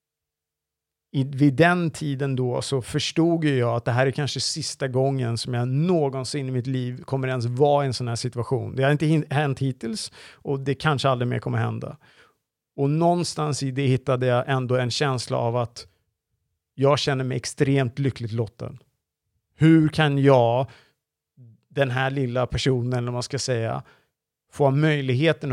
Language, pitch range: English, 120-145 Hz